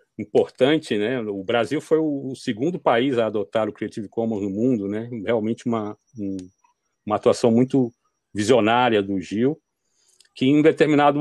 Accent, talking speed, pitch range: Brazilian, 155 wpm, 110-140 Hz